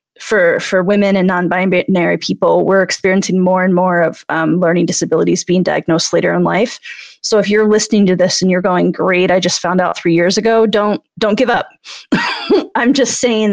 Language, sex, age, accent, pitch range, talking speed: English, female, 30-49, American, 185-225 Hz, 195 wpm